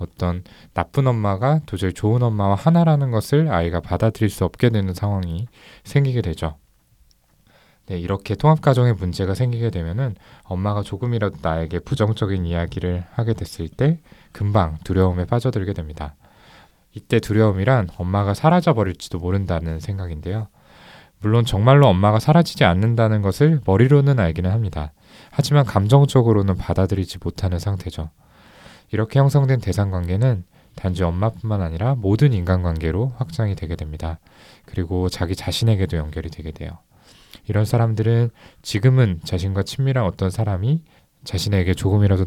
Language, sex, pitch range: Korean, male, 90-120 Hz